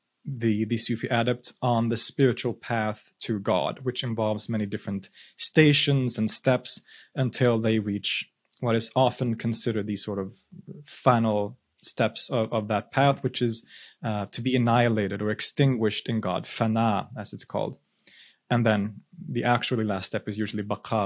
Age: 30-49